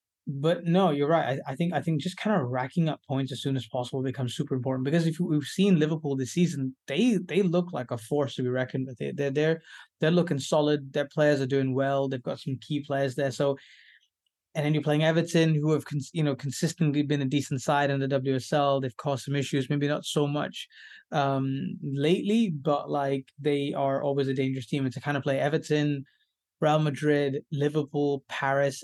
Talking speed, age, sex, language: 210 wpm, 20-39, male, English